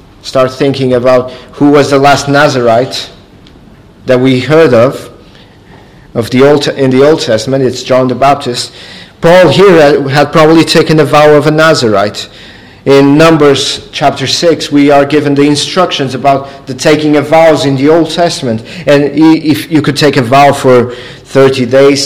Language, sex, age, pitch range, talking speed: English, male, 40-59, 130-160 Hz, 165 wpm